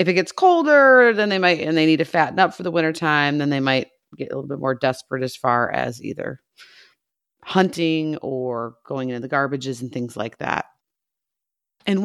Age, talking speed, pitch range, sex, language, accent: 30-49, 205 wpm, 135-170 Hz, female, English, American